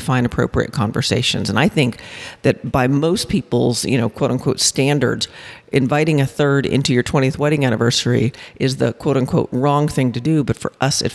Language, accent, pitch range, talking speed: English, American, 130-165 Hz, 190 wpm